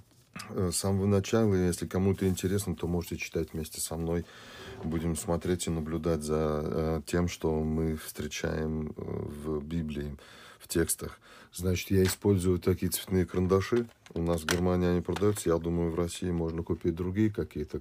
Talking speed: 150 wpm